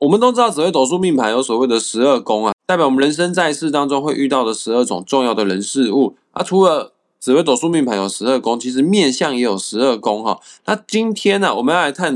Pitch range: 110-160 Hz